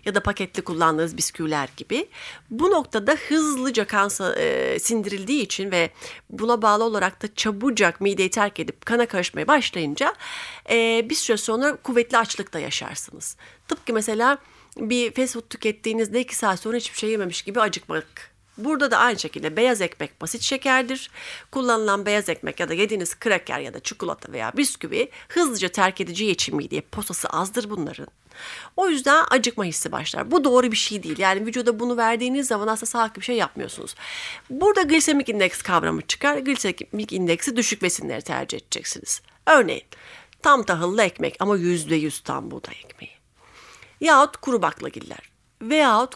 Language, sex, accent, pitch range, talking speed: Turkish, female, native, 195-270 Hz, 155 wpm